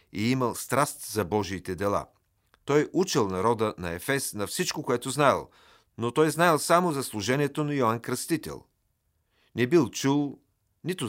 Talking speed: 150 wpm